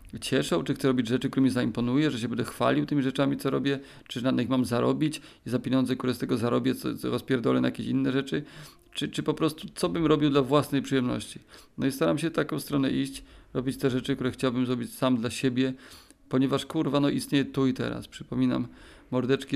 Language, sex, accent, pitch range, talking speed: Polish, male, native, 130-145 Hz, 215 wpm